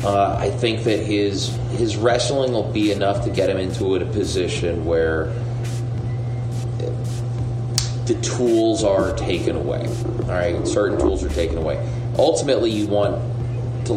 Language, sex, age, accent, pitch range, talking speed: English, male, 30-49, American, 100-120 Hz, 140 wpm